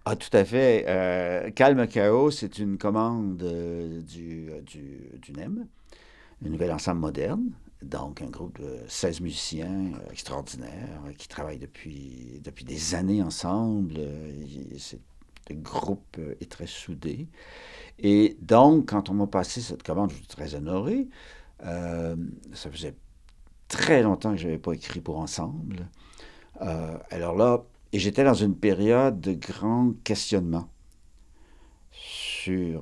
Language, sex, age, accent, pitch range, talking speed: French, male, 60-79, French, 85-110 Hz, 145 wpm